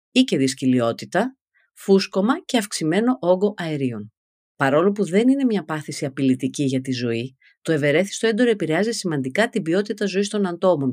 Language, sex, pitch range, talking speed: Greek, female, 130-210 Hz, 155 wpm